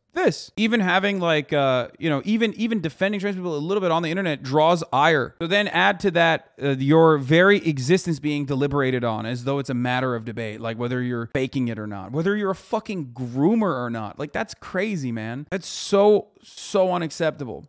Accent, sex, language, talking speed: American, male, English, 205 wpm